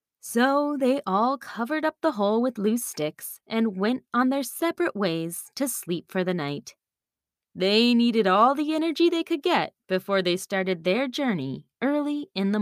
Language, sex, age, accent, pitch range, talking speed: English, female, 20-39, American, 185-265 Hz, 175 wpm